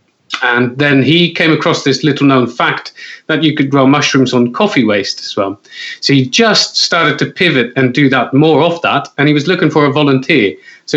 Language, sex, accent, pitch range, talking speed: English, male, British, 120-150 Hz, 215 wpm